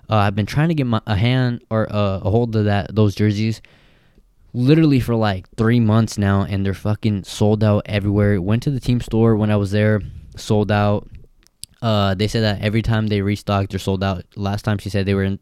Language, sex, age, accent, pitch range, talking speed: English, male, 20-39, American, 100-110 Hz, 225 wpm